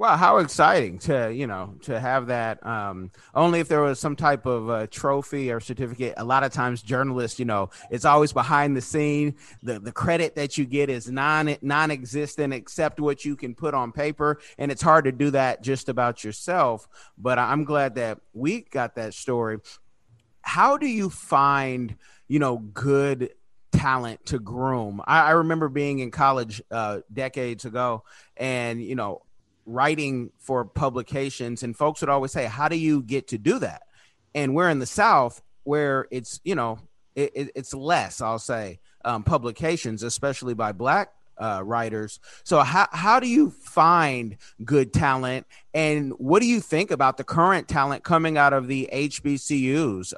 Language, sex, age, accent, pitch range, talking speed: English, male, 30-49, American, 120-145 Hz, 175 wpm